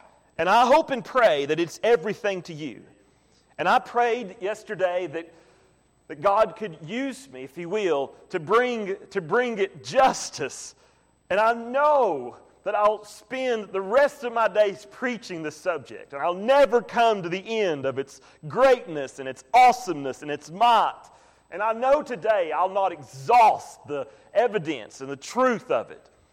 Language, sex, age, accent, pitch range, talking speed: English, male, 40-59, American, 180-260 Hz, 165 wpm